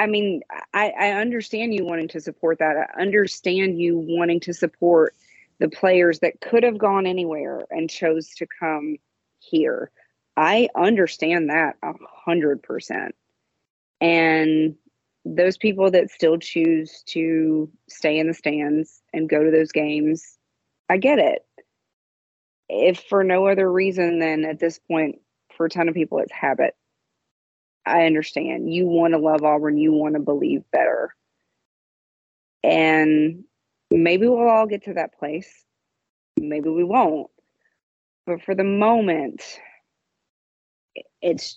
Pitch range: 155-180 Hz